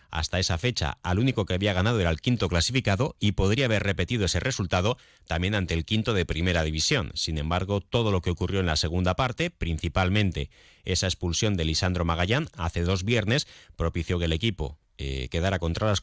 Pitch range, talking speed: 80-100 Hz, 195 wpm